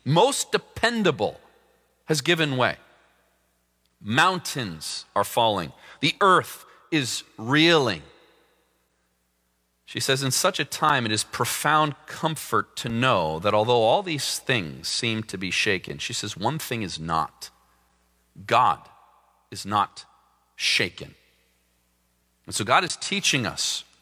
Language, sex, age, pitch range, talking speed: English, male, 40-59, 105-155 Hz, 120 wpm